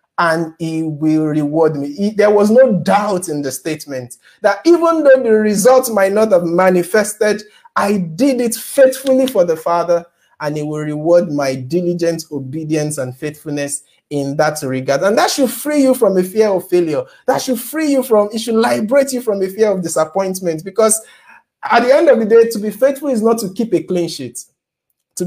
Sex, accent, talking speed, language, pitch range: male, Nigerian, 195 wpm, English, 160-220 Hz